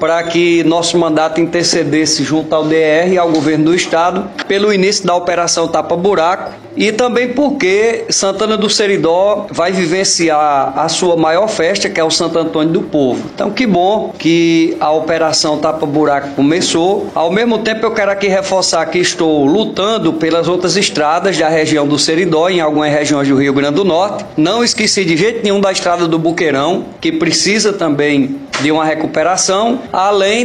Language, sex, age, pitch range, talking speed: Portuguese, male, 20-39, 160-200 Hz, 175 wpm